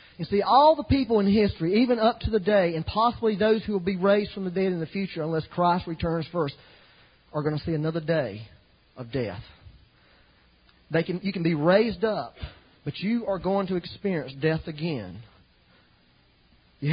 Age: 40-59